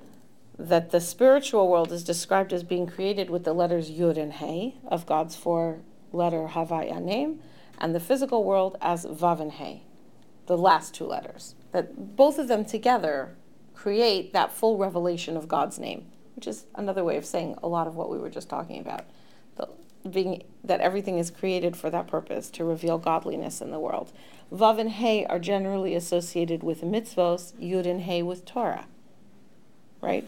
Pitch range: 165-195 Hz